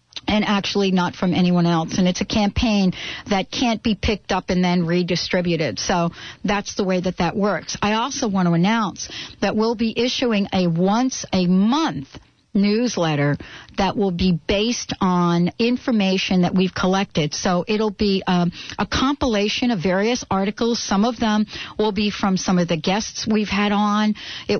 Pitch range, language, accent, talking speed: 180-220 Hz, English, American, 175 wpm